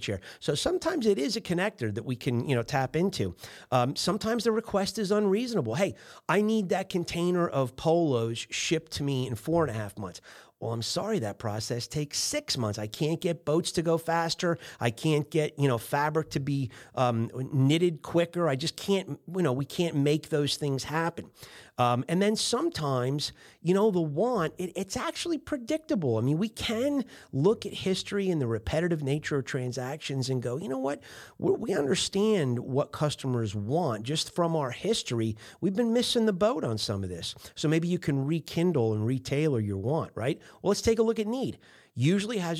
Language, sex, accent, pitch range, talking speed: English, male, American, 130-185 Hz, 195 wpm